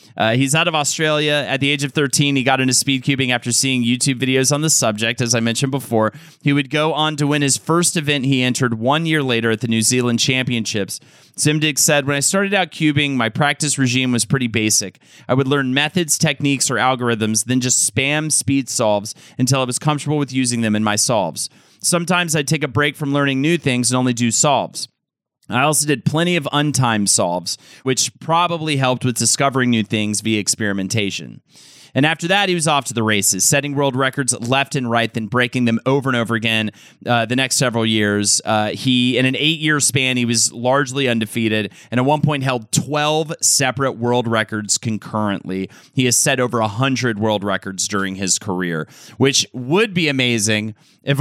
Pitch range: 115-145 Hz